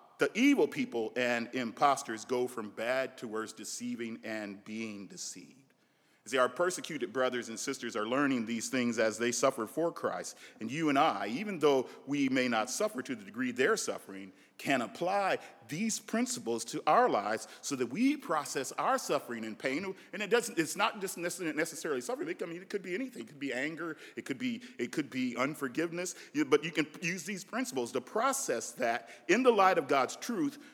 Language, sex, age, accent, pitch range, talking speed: English, male, 40-59, American, 120-205 Hz, 195 wpm